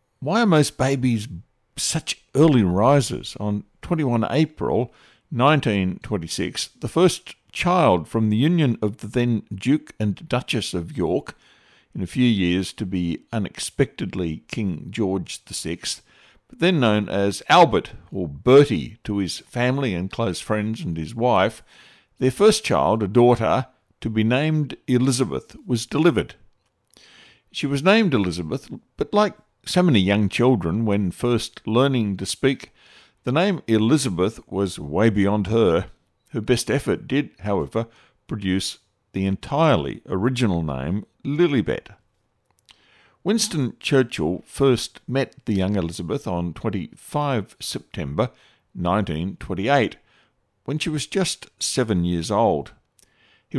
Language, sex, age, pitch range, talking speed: English, male, 60-79, 100-135 Hz, 130 wpm